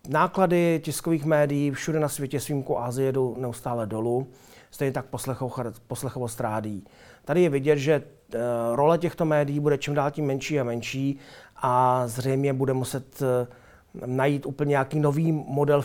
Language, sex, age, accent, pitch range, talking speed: Czech, male, 40-59, native, 125-145 Hz, 140 wpm